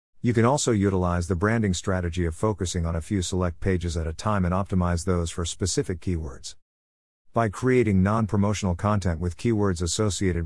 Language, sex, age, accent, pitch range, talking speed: English, male, 50-69, American, 85-110 Hz, 170 wpm